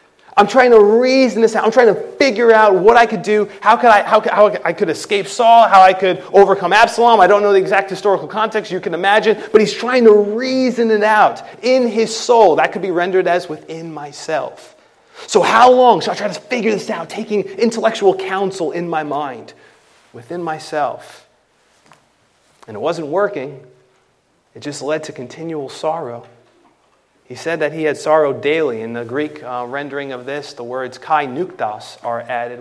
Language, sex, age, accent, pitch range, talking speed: English, male, 30-49, American, 135-205 Hz, 195 wpm